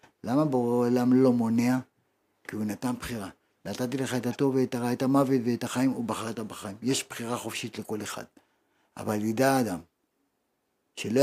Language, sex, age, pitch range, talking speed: Hebrew, male, 50-69, 125-170 Hz, 155 wpm